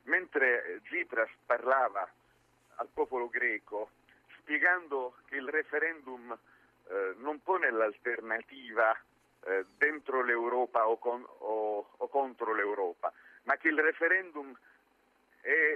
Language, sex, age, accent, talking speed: Italian, male, 50-69, native, 105 wpm